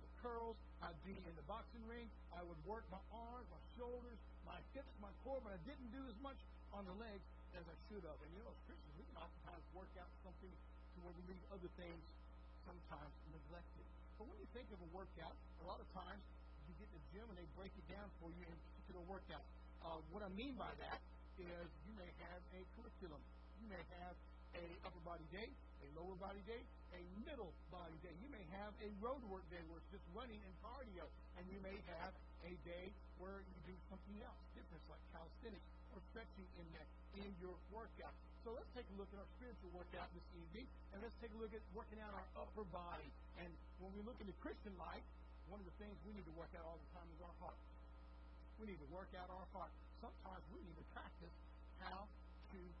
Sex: male